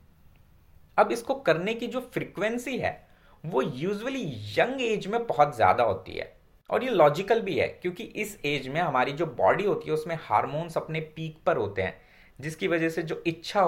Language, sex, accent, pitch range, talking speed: Hindi, male, native, 130-190 Hz, 185 wpm